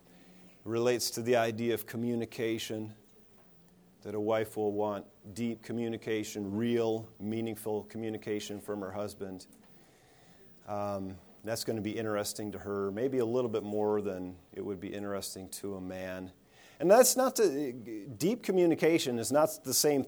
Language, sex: English, male